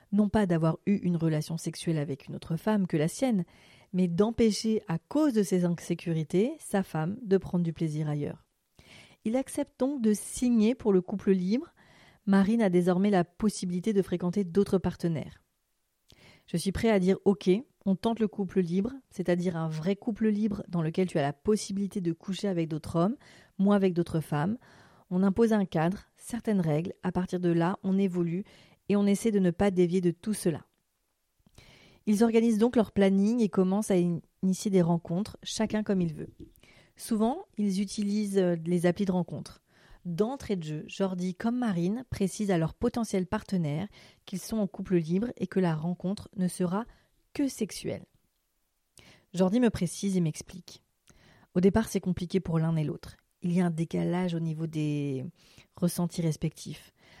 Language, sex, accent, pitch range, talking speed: French, female, French, 175-210 Hz, 175 wpm